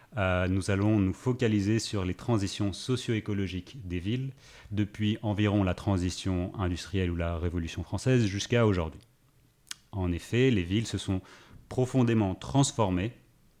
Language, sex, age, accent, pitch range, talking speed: French, male, 30-49, French, 95-115 Hz, 130 wpm